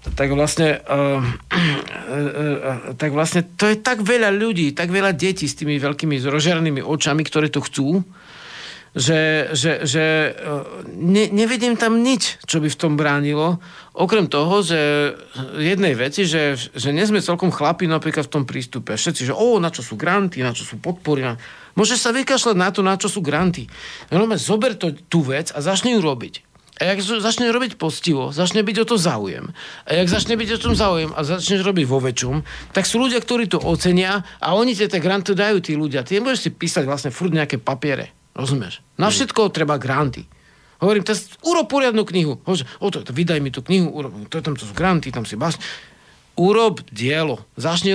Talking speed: 190 wpm